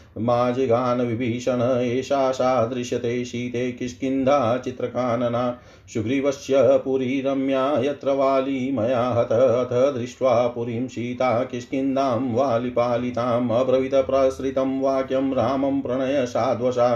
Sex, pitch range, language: male, 120-135 Hz, Hindi